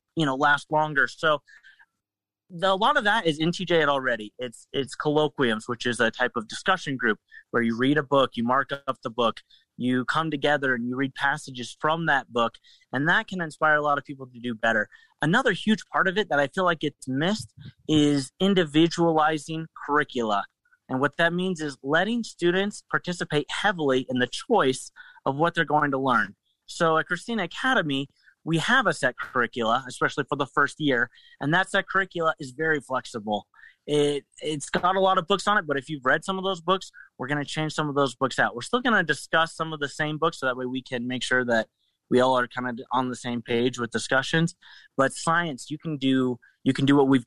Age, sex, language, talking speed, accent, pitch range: 30-49, male, English, 220 wpm, American, 130-170 Hz